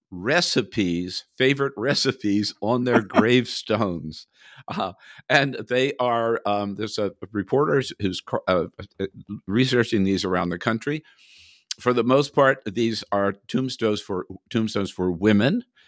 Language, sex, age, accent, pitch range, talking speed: English, male, 50-69, American, 95-125 Hz, 120 wpm